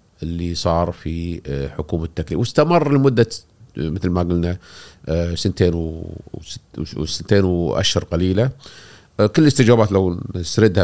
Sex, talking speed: male, 105 wpm